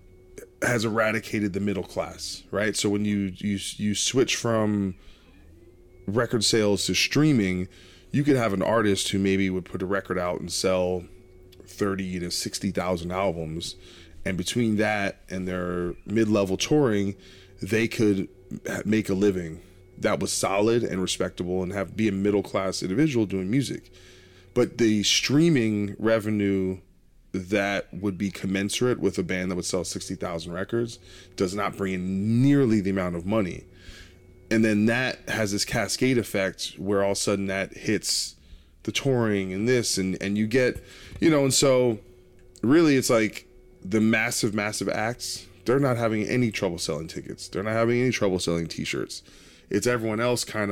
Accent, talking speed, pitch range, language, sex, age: American, 165 wpm, 95-110 Hz, English, male, 20-39